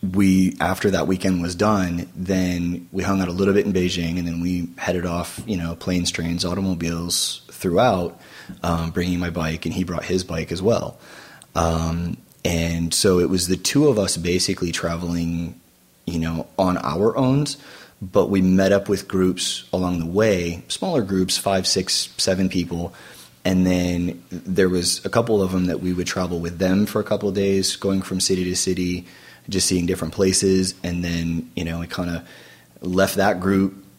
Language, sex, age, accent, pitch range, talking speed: English, male, 30-49, American, 85-95 Hz, 185 wpm